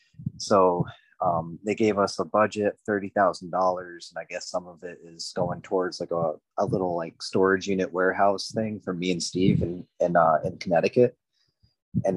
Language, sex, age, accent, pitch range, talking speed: English, male, 30-49, American, 90-105 Hz, 180 wpm